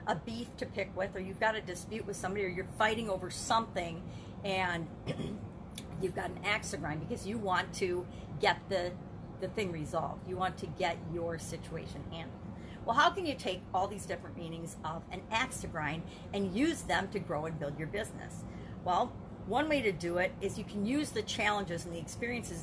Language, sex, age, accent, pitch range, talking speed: English, female, 40-59, American, 180-220 Hz, 205 wpm